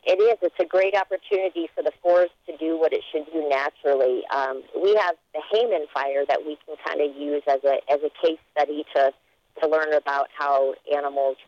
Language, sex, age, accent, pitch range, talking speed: English, female, 40-59, American, 145-170 Hz, 210 wpm